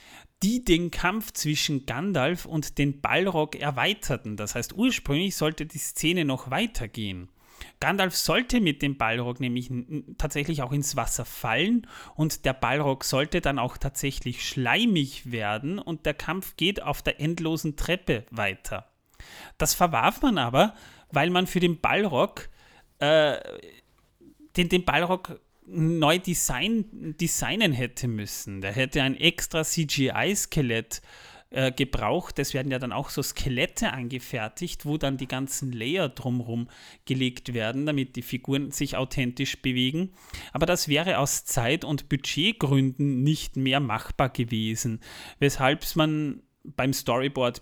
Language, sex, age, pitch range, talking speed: German, male, 30-49, 125-160 Hz, 135 wpm